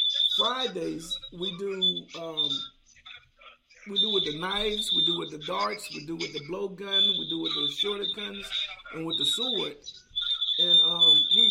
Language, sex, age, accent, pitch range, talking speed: English, male, 50-69, American, 180-240 Hz, 170 wpm